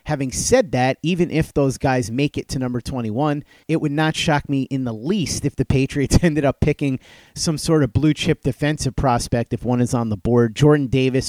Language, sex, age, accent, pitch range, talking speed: English, male, 30-49, American, 120-150 Hz, 215 wpm